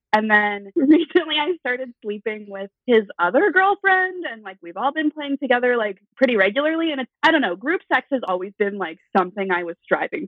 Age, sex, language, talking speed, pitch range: 20-39, female, English, 205 wpm, 185-265 Hz